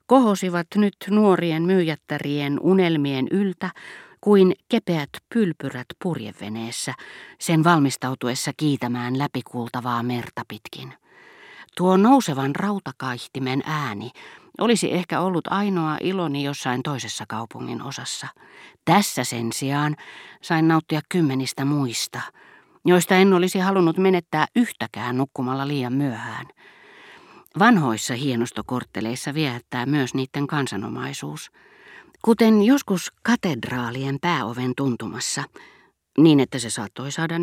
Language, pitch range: Finnish, 125-175 Hz